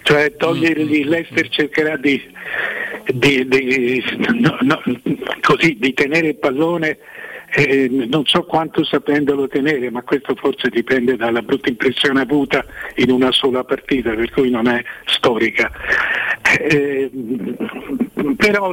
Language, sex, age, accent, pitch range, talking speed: Italian, male, 60-79, native, 130-165 Hz, 130 wpm